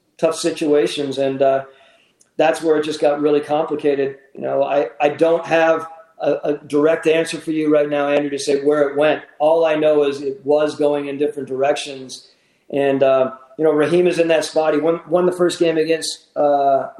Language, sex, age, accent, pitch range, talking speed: English, male, 40-59, American, 135-155 Hz, 205 wpm